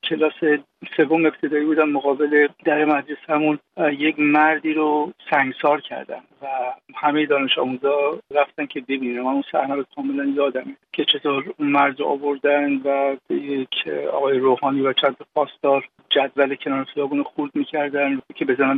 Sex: male